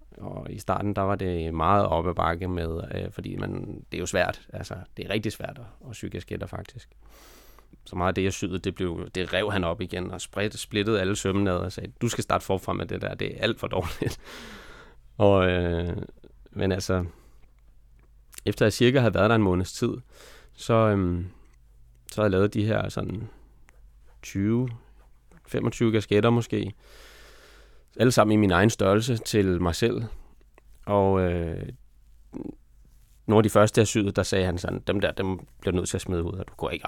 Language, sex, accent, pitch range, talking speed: Danish, male, native, 90-115 Hz, 190 wpm